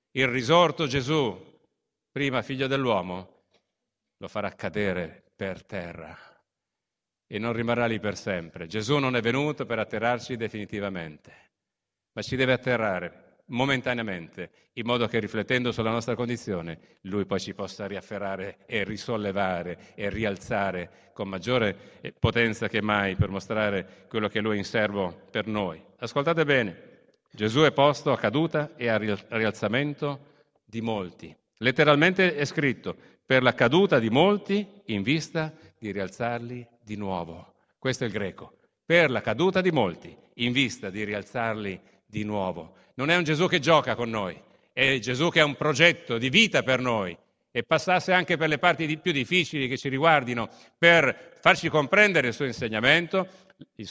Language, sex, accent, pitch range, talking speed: Italian, male, native, 105-145 Hz, 155 wpm